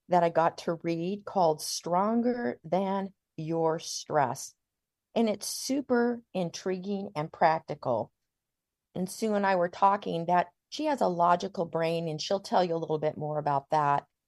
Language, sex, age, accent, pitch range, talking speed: English, female, 40-59, American, 155-205 Hz, 160 wpm